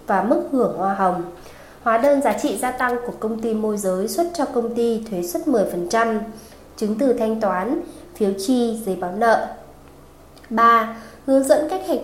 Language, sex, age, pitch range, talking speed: Vietnamese, female, 20-39, 200-255 Hz, 185 wpm